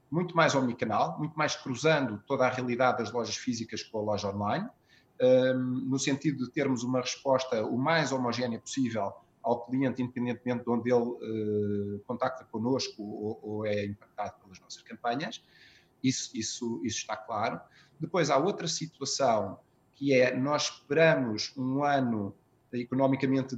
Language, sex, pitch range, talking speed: Portuguese, male, 120-145 Hz, 145 wpm